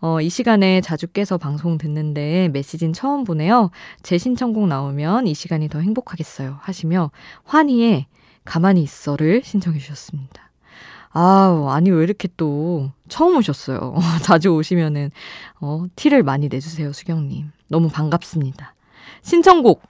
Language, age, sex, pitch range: Korean, 20-39, female, 155-200 Hz